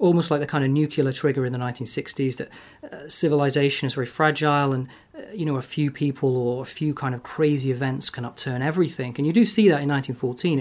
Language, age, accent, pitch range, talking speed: English, 40-59, British, 130-155 Hz, 225 wpm